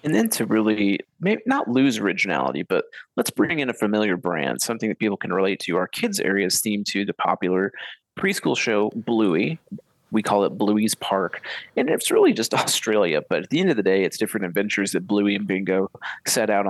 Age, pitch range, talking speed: 30-49, 100-120 Hz, 210 wpm